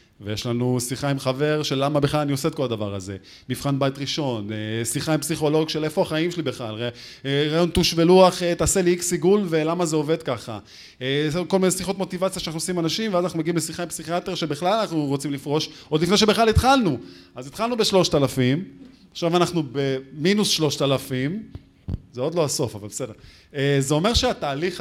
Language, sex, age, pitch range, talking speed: Hebrew, male, 20-39, 115-165 Hz, 180 wpm